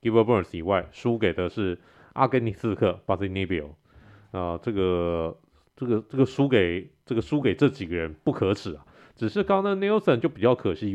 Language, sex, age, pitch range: Chinese, male, 30-49, 95-130 Hz